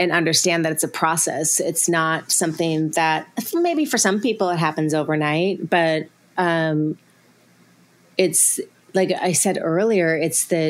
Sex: female